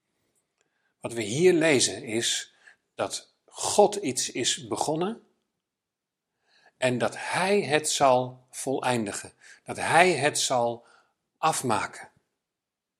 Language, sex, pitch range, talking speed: Dutch, male, 130-170 Hz, 95 wpm